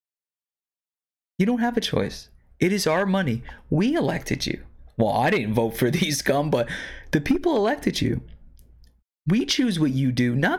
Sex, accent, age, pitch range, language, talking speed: male, American, 20-39, 120-195 Hz, English, 170 wpm